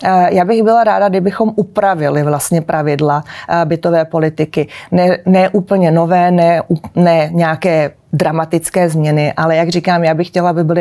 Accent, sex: native, female